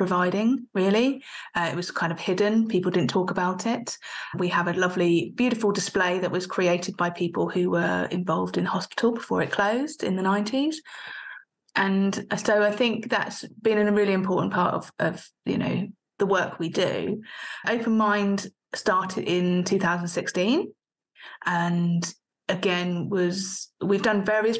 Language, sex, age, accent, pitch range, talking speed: English, female, 30-49, British, 180-225 Hz, 160 wpm